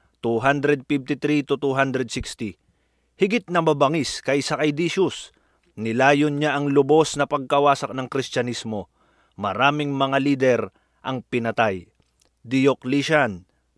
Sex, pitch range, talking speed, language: male, 125-150 Hz, 100 wpm, Filipino